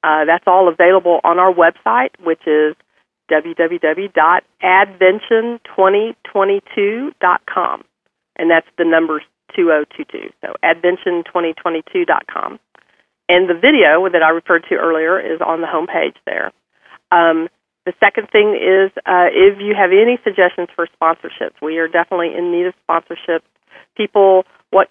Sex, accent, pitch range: female, American, 165-190 Hz